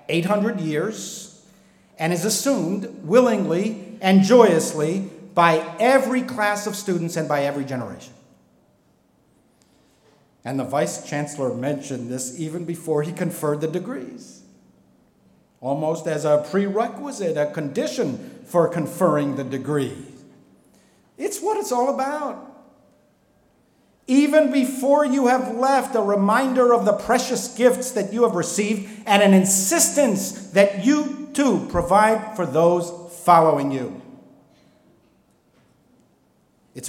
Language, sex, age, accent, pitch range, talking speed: English, male, 50-69, American, 145-230 Hz, 115 wpm